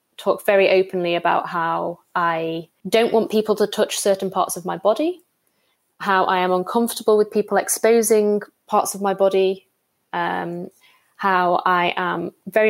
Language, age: English, 20-39